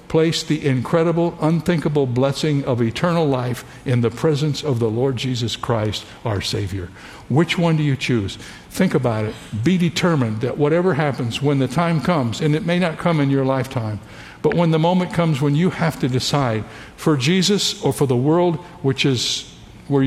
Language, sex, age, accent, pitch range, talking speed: English, male, 60-79, American, 120-160 Hz, 185 wpm